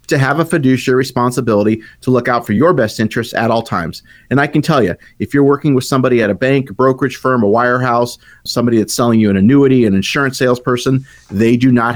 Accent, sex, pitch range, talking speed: American, male, 110-130 Hz, 230 wpm